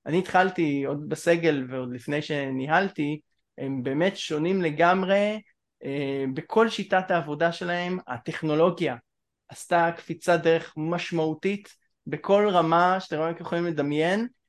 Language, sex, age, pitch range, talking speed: Hebrew, male, 20-39, 155-195 Hz, 115 wpm